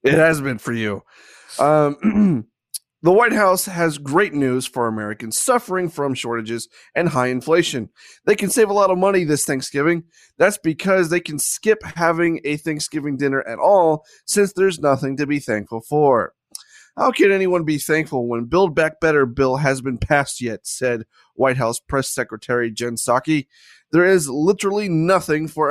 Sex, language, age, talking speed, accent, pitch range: male, English, 30-49, 170 wpm, American, 130-175 Hz